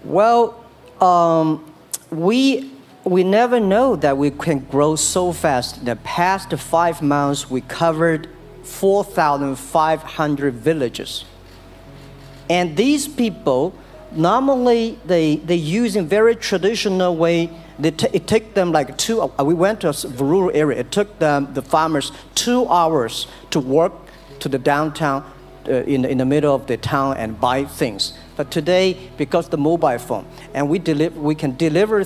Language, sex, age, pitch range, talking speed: English, male, 50-69, 135-180 Hz, 150 wpm